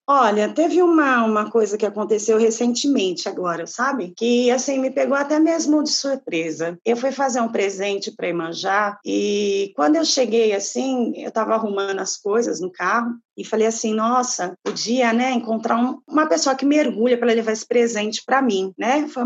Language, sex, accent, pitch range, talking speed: Portuguese, female, Brazilian, 200-255 Hz, 180 wpm